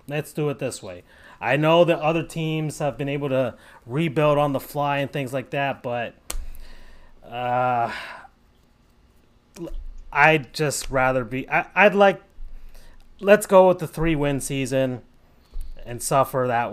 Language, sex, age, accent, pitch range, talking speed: English, male, 30-49, American, 125-160 Hz, 140 wpm